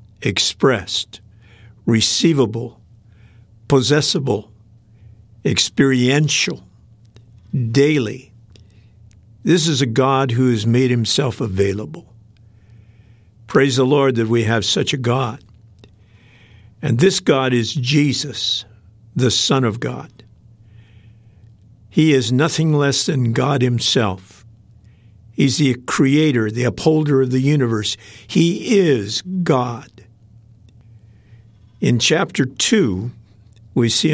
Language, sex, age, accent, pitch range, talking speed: English, male, 50-69, American, 110-135 Hz, 95 wpm